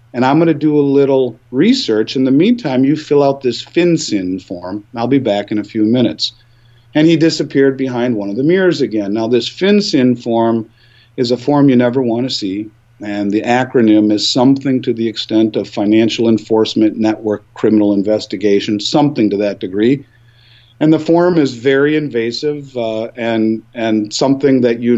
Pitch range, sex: 115-140 Hz, male